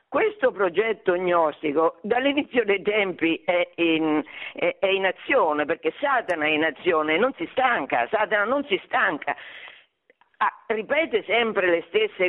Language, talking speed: Italian, 125 wpm